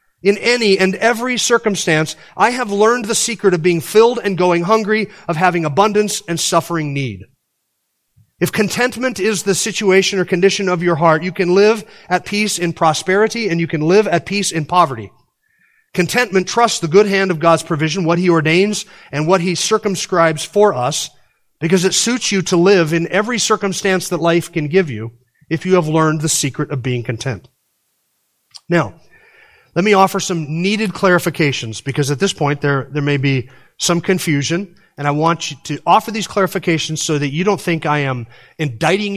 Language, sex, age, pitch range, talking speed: English, male, 40-59, 150-195 Hz, 185 wpm